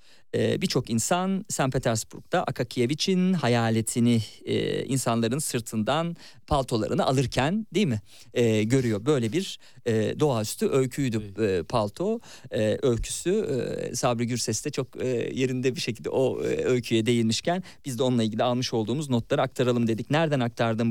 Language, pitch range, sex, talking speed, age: Turkish, 115-175 Hz, male, 140 wpm, 50-69